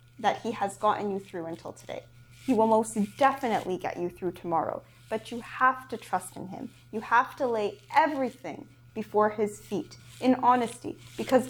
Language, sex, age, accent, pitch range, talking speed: English, female, 20-39, American, 175-245 Hz, 175 wpm